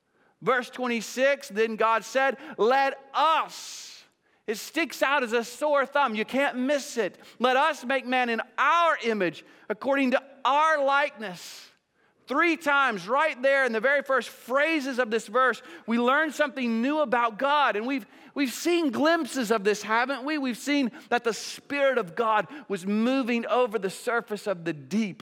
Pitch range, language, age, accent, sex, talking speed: 230-285 Hz, English, 40-59, American, male, 170 wpm